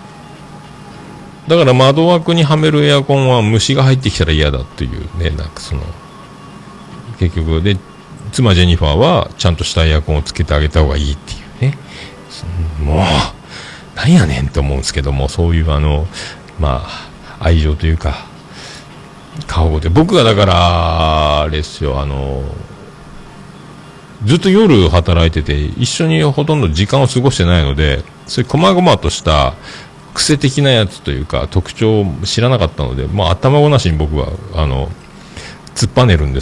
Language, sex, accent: Japanese, male, native